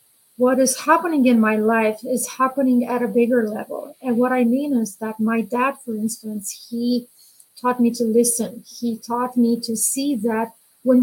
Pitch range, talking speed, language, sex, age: 230-265 Hz, 185 wpm, English, female, 30-49